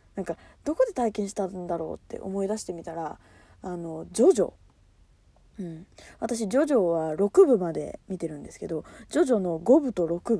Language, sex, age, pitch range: Japanese, female, 20-39, 155-235 Hz